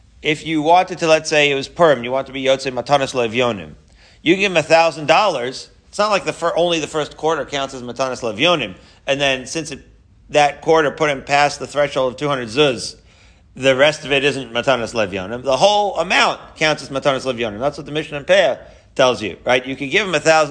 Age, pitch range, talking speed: 40-59, 130-160 Hz, 215 wpm